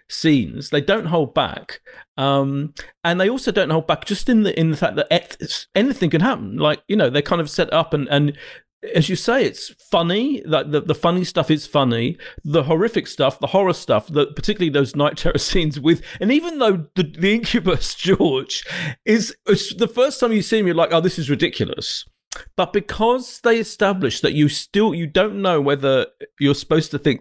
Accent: British